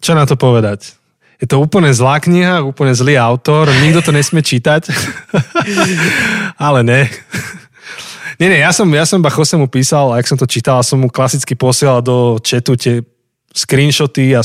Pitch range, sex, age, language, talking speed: 125-150 Hz, male, 20-39, Slovak, 165 wpm